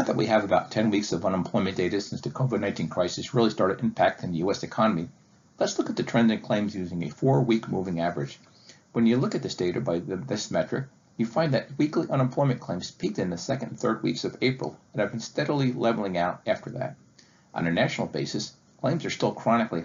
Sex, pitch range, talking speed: male, 95-125 Hz, 220 wpm